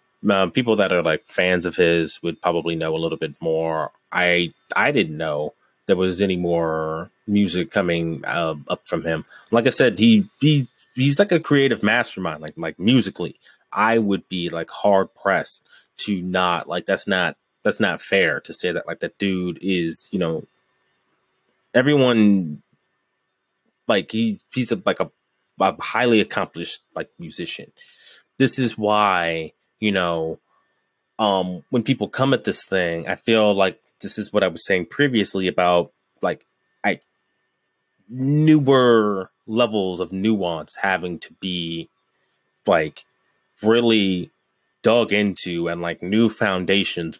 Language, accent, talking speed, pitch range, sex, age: English, American, 150 wpm, 85-110 Hz, male, 20-39